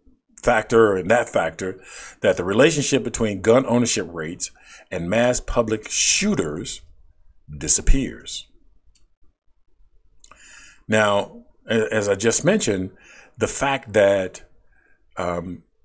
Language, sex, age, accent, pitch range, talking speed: English, male, 50-69, American, 90-120 Hz, 95 wpm